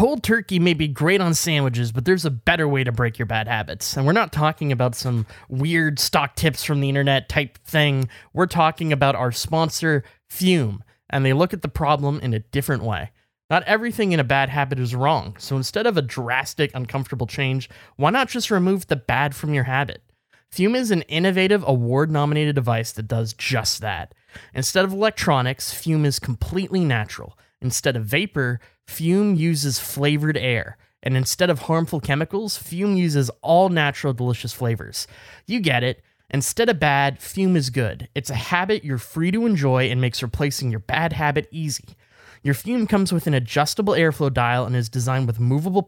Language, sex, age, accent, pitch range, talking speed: English, male, 20-39, American, 125-165 Hz, 185 wpm